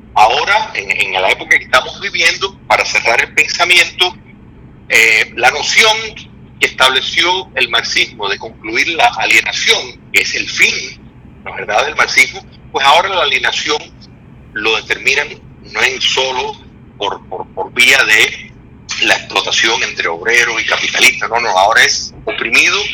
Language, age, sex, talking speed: Spanish, 40-59, male, 150 wpm